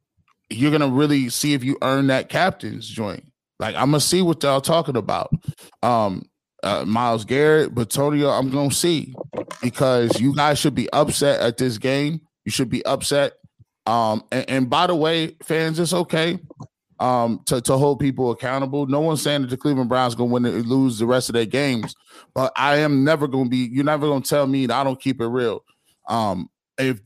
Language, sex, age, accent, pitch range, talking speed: English, male, 20-39, American, 125-150 Hz, 210 wpm